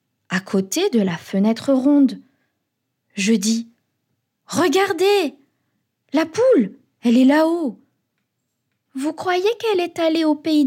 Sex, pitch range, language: female, 190-285 Hz, French